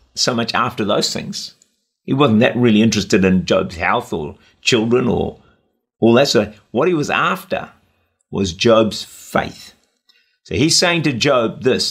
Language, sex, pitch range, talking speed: English, male, 105-140 Hz, 160 wpm